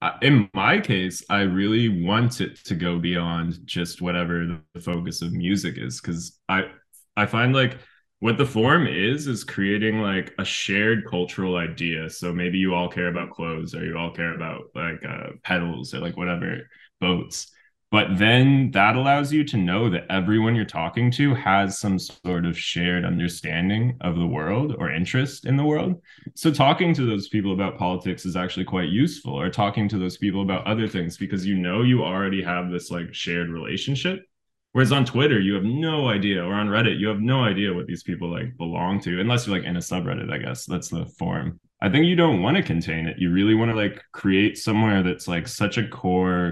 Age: 20-39